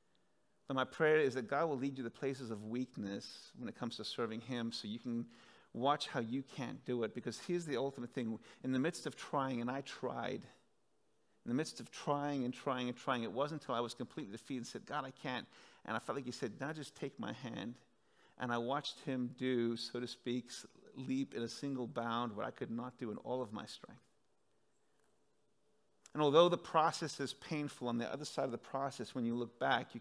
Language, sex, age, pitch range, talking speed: English, male, 40-59, 120-145 Hz, 230 wpm